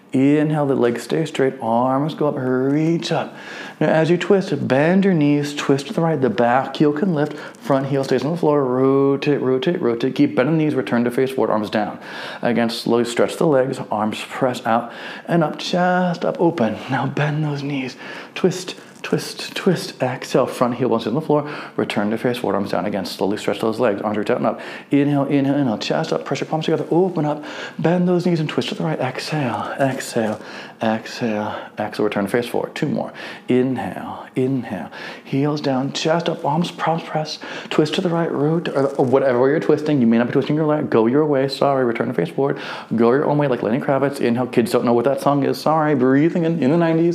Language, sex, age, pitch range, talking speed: English, male, 40-59, 125-160 Hz, 215 wpm